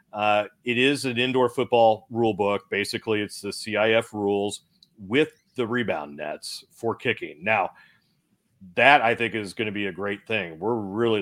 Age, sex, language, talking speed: 40-59, male, English, 170 wpm